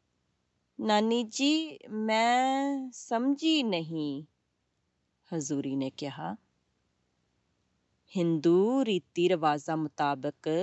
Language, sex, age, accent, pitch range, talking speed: English, female, 30-49, Indian, 145-205 Hz, 75 wpm